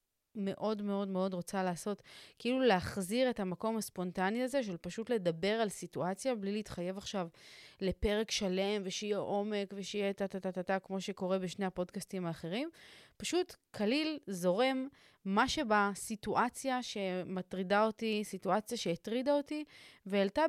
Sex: female